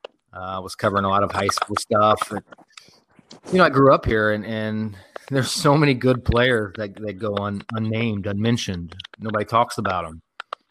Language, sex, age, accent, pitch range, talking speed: English, male, 30-49, American, 100-120 Hz, 195 wpm